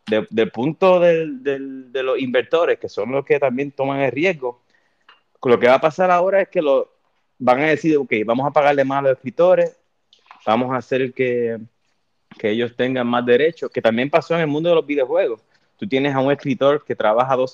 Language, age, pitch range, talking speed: Spanish, 30-49, 120-150 Hz, 210 wpm